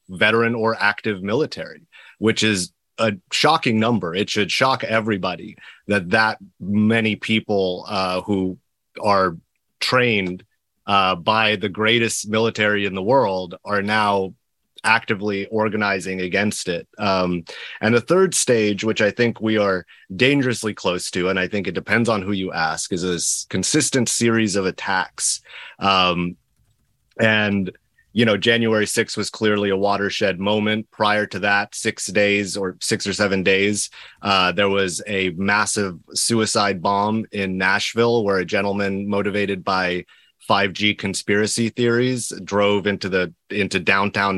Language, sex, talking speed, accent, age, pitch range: English, male, 145 wpm, American, 30-49, 95-110 Hz